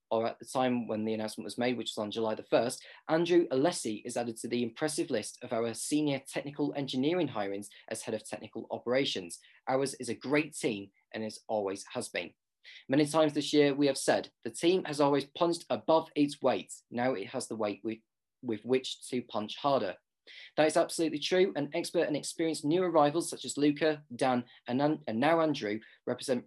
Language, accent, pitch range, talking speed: English, British, 115-150 Hz, 200 wpm